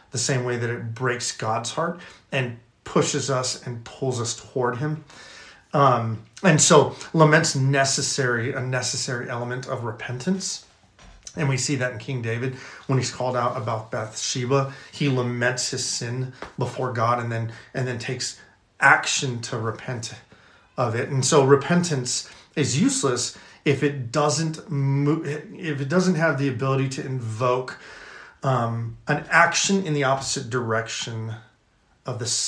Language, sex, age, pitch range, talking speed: English, male, 30-49, 115-135 Hz, 150 wpm